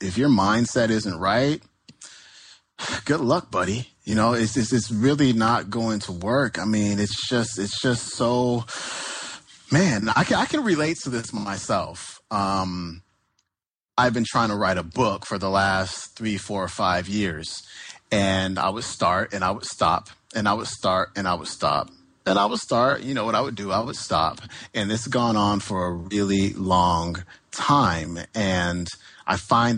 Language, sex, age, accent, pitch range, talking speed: English, male, 30-49, American, 95-125 Hz, 185 wpm